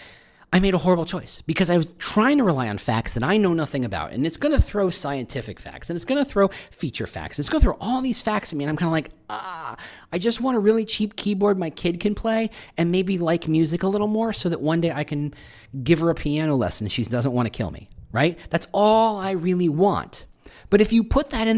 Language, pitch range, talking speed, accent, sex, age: English, 135-205 Hz, 265 wpm, American, male, 40-59